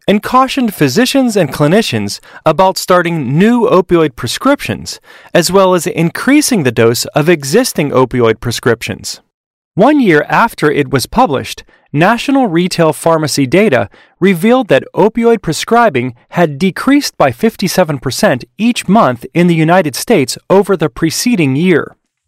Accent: American